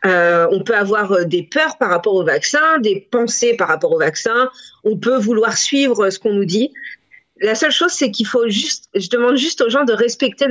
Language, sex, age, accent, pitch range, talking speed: French, female, 40-59, French, 210-275 Hz, 215 wpm